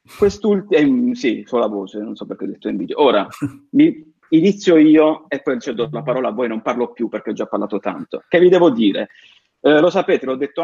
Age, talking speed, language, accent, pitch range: 30-49, 225 wpm, Italian, native, 125-200 Hz